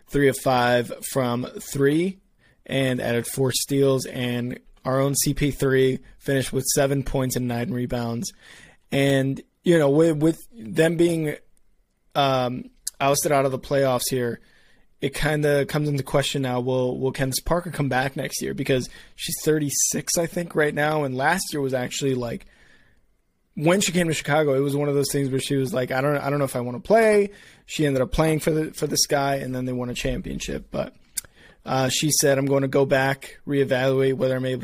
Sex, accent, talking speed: male, American, 195 wpm